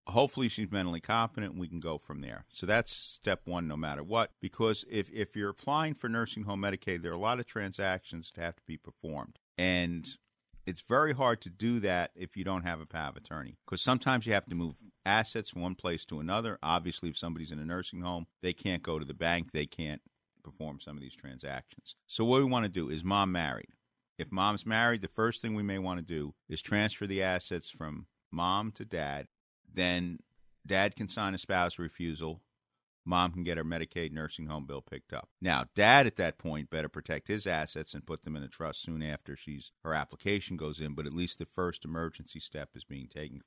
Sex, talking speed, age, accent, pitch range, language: male, 220 wpm, 50-69, American, 80-105 Hz, English